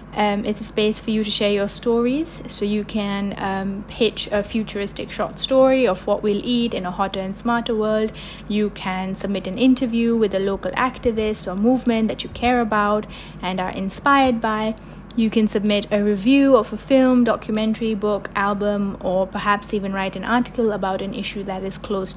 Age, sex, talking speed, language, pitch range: 20-39, female, 190 wpm, English, 195-220 Hz